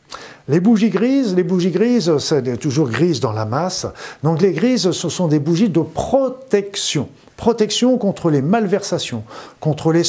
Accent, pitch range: French, 130-180 Hz